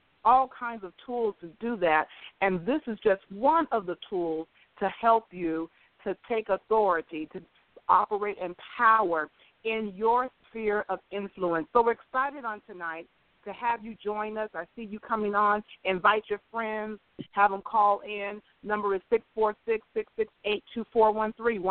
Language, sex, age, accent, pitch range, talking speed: English, female, 40-59, American, 185-230 Hz, 150 wpm